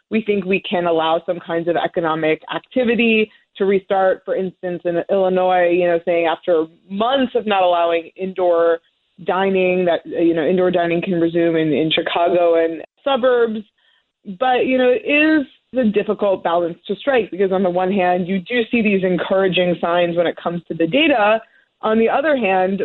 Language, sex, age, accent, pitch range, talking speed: English, female, 20-39, American, 175-205 Hz, 180 wpm